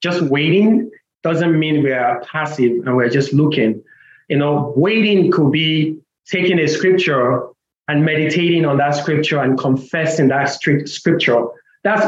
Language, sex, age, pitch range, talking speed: English, male, 30-49, 140-180 Hz, 145 wpm